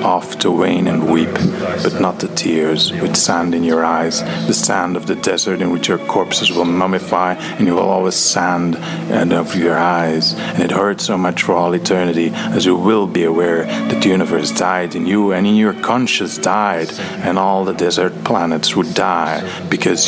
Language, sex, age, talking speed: English, male, 30-49, 195 wpm